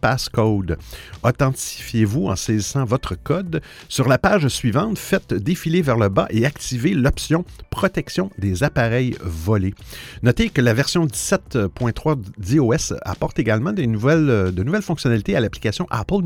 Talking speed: 140 wpm